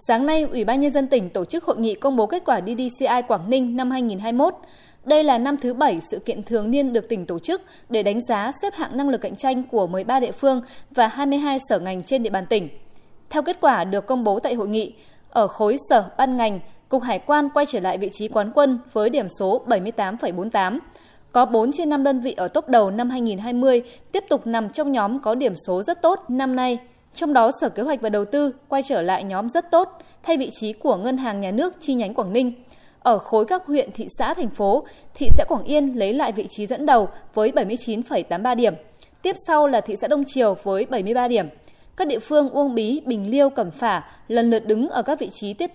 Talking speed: 235 wpm